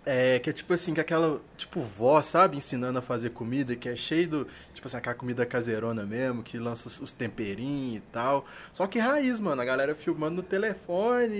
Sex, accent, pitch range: male, Brazilian, 125-170 Hz